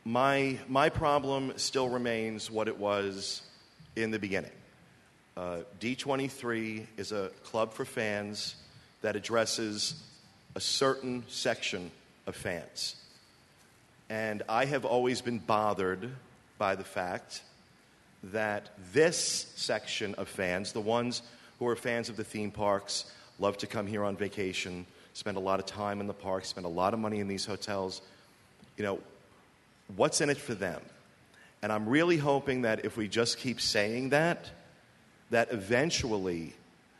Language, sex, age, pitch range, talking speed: English, male, 40-59, 105-125 Hz, 150 wpm